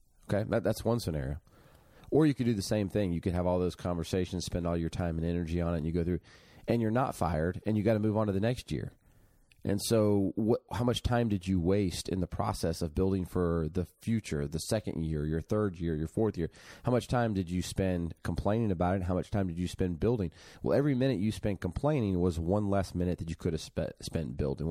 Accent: American